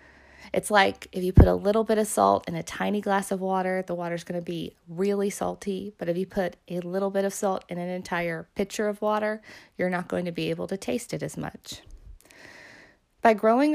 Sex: female